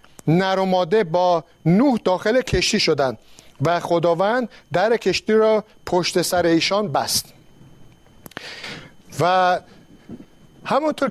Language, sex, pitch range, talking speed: Persian, male, 170-220 Hz, 90 wpm